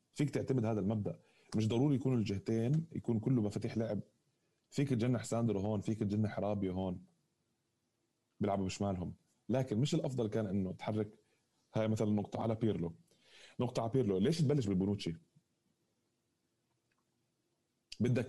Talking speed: 130 wpm